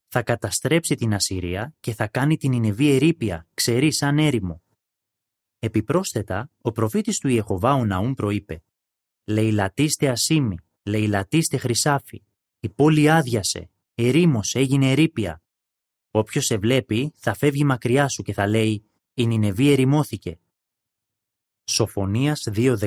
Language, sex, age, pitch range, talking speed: Greek, male, 30-49, 100-130 Hz, 115 wpm